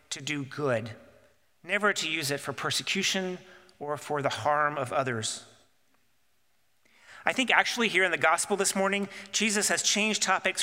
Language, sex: English, male